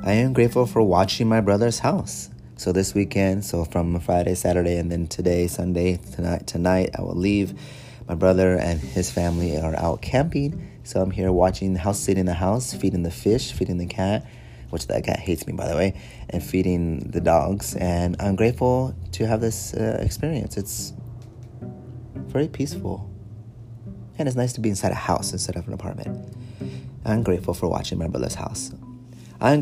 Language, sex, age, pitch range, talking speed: English, male, 30-49, 85-110 Hz, 185 wpm